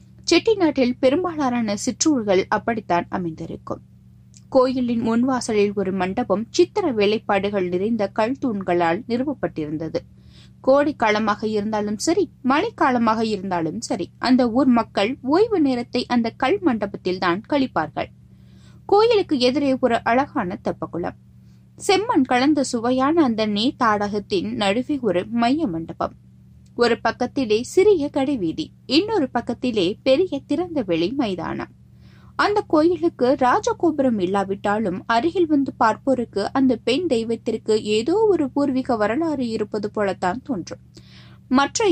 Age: 20-39